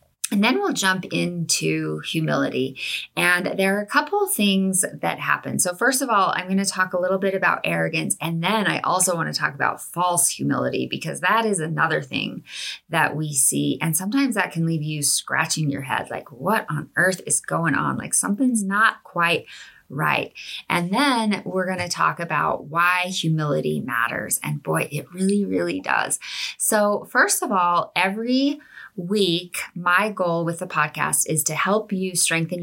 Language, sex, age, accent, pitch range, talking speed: English, female, 30-49, American, 155-200 Hz, 175 wpm